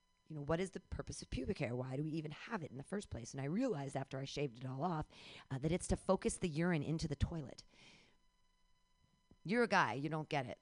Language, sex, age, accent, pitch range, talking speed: English, female, 40-59, American, 145-215 Hz, 255 wpm